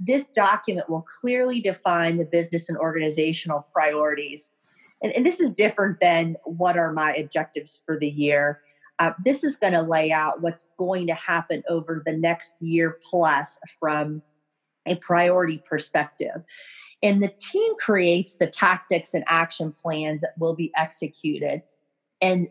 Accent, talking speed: American, 150 wpm